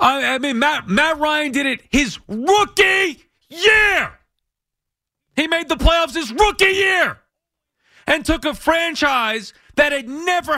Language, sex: English, male